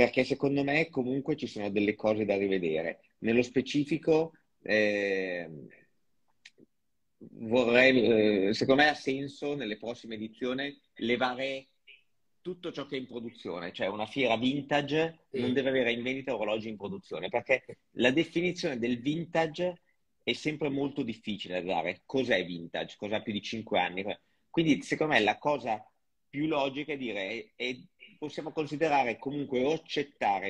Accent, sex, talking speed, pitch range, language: native, male, 145 wpm, 105-140 Hz, Italian